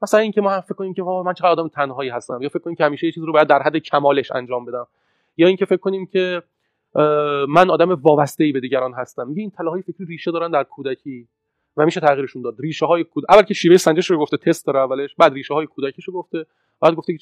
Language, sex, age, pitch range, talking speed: Persian, male, 30-49, 135-175 Hz, 240 wpm